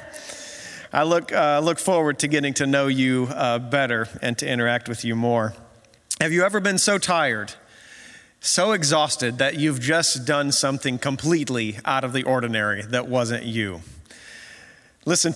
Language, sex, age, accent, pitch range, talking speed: English, male, 30-49, American, 140-225 Hz, 155 wpm